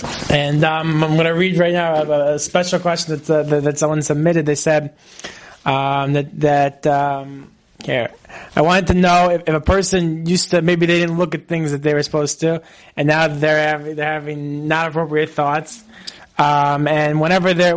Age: 20-39